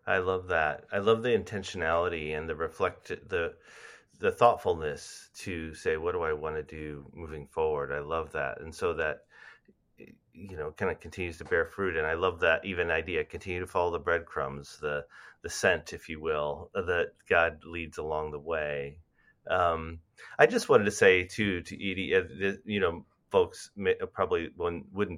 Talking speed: 175 wpm